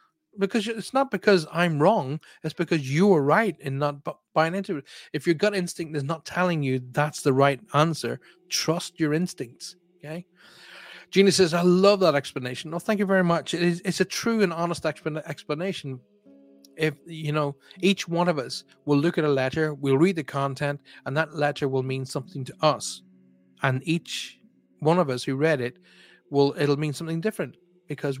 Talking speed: 190 wpm